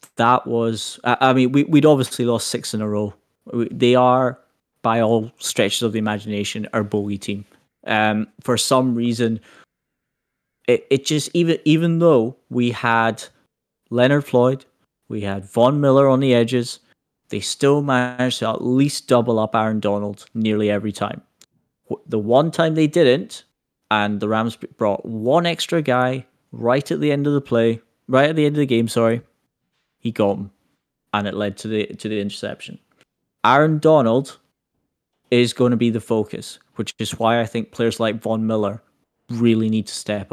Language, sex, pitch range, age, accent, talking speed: English, male, 110-135 Hz, 20-39, British, 175 wpm